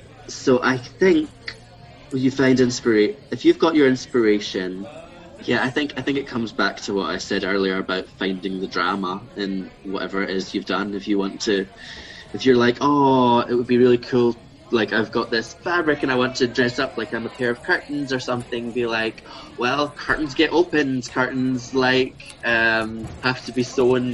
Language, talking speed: English, 195 wpm